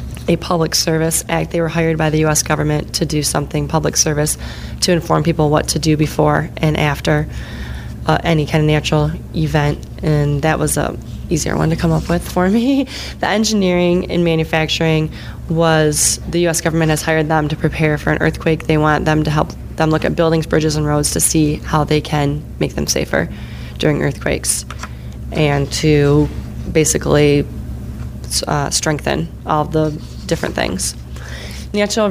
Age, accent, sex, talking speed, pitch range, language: 20-39, American, female, 170 wpm, 150-165 Hz, English